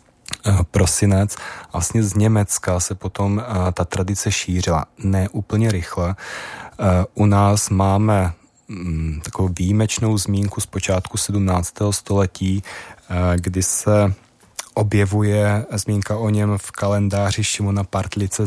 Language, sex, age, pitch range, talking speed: Czech, male, 20-39, 90-105 Hz, 100 wpm